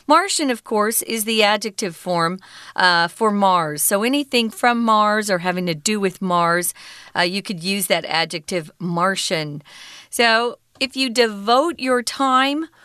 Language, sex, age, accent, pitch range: Chinese, female, 40-59, American, 180-240 Hz